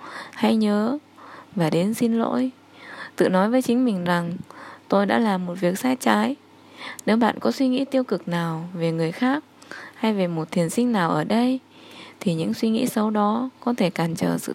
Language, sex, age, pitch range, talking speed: Vietnamese, female, 10-29, 180-255 Hz, 200 wpm